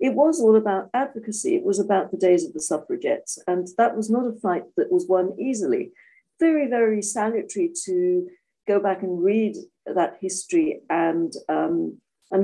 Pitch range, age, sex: 200-310 Hz, 50-69, female